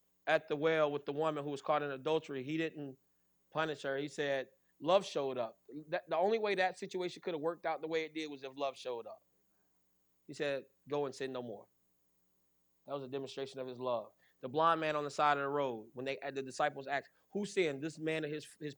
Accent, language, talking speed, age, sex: American, English, 235 wpm, 30-49, male